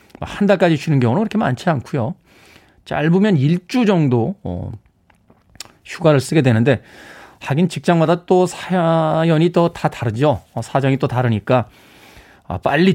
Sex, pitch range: male, 115-185 Hz